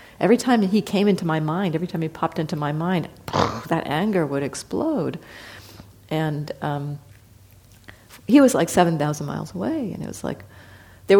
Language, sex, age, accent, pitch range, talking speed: English, female, 50-69, American, 145-200 Hz, 165 wpm